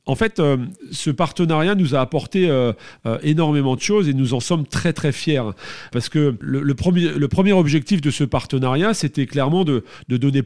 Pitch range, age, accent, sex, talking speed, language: 125-170 Hz, 40-59, French, male, 190 wpm, French